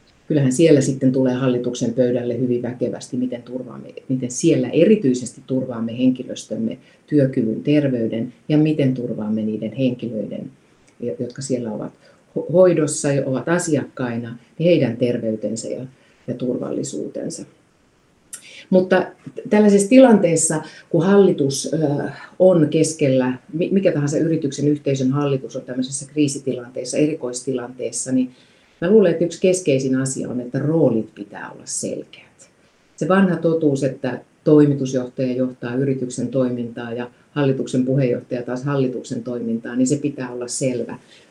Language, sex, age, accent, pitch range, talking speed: Finnish, female, 40-59, native, 125-155 Hz, 120 wpm